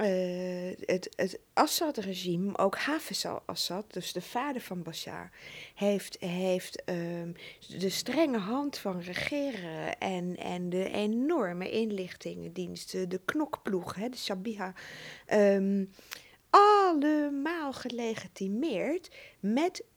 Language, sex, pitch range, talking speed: Dutch, female, 180-245 Hz, 100 wpm